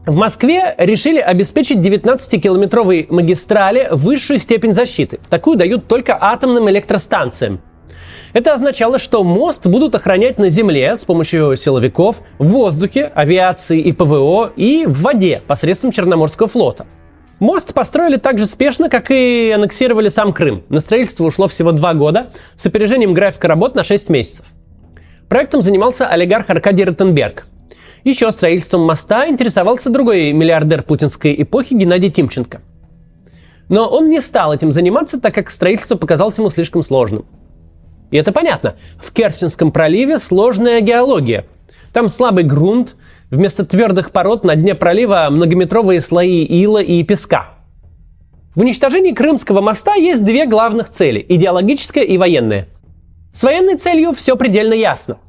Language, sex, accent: Russian, male, native